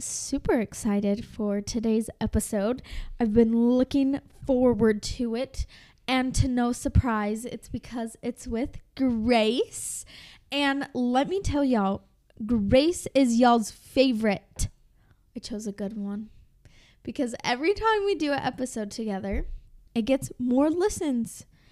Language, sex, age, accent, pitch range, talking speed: English, female, 10-29, American, 225-260 Hz, 125 wpm